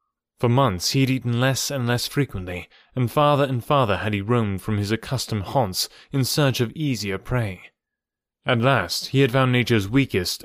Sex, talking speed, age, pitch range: male, 185 wpm, 30-49, 110-145 Hz